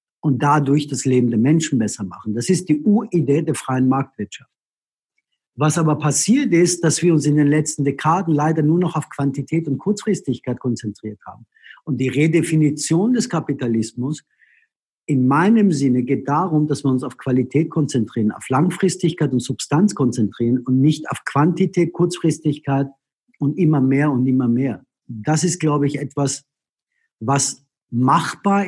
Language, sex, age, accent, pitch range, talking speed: English, male, 50-69, German, 135-165 Hz, 155 wpm